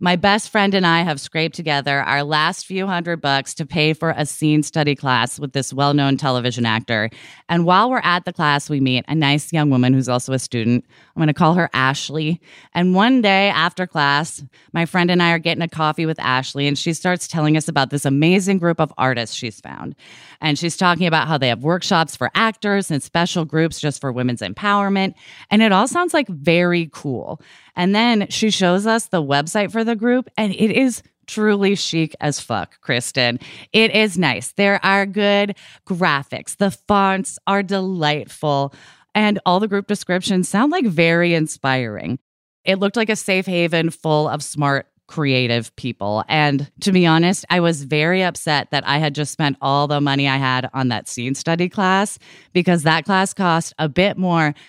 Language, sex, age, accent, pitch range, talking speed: English, female, 20-39, American, 140-185 Hz, 195 wpm